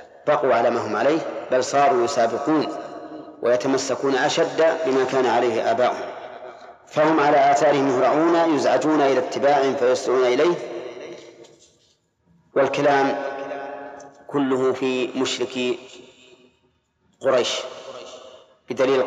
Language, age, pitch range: Arabic, 40-59, 130-155 Hz